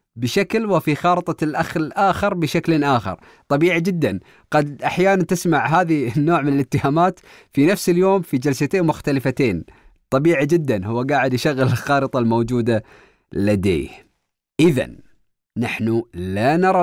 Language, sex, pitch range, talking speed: Arabic, male, 120-165 Hz, 120 wpm